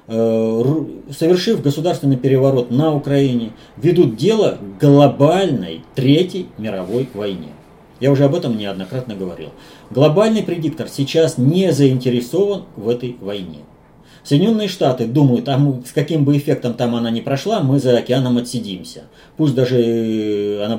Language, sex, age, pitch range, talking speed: Russian, male, 30-49, 115-155 Hz, 130 wpm